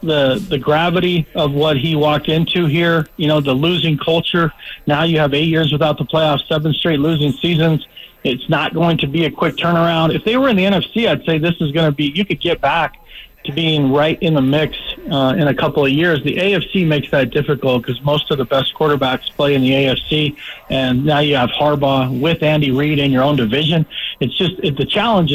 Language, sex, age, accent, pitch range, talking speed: English, male, 40-59, American, 145-185 Hz, 225 wpm